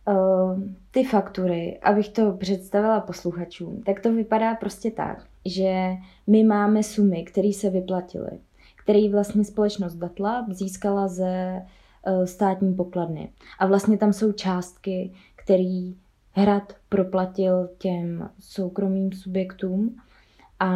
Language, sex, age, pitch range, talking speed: Czech, female, 20-39, 185-205 Hz, 110 wpm